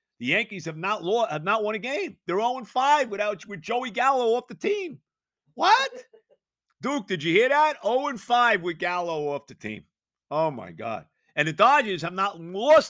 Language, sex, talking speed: English, male, 195 wpm